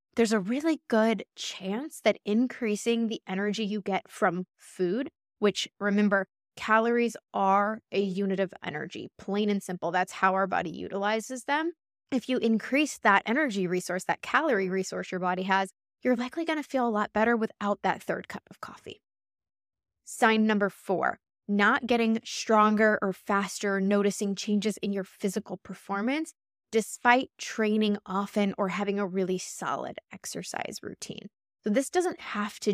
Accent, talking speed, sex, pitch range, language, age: American, 155 wpm, female, 195-235 Hz, English, 20-39